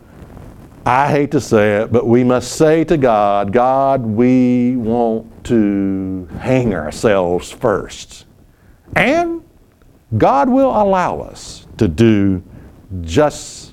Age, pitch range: 60-79, 110-160 Hz